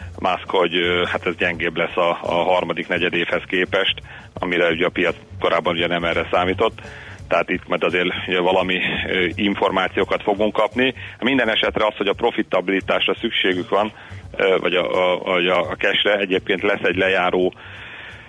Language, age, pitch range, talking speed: Hungarian, 40-59, 90-100 Hz, 155 wpm